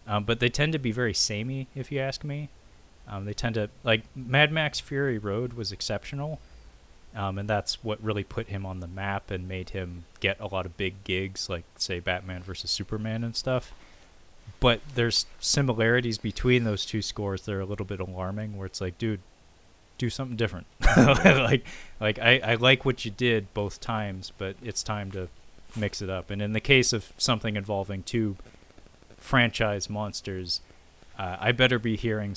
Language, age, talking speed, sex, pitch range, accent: English, 30-49, 185 wpm, male, 95-115 Hz, American